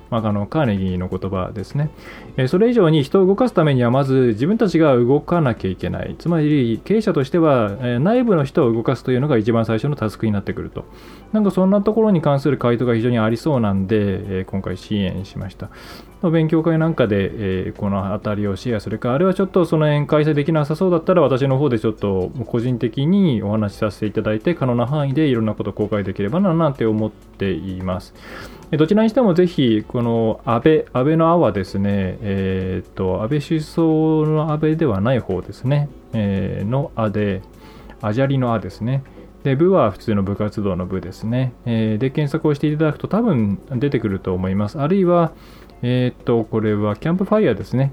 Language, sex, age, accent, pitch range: Japanese, male, 20-39, native, 100-155 Hz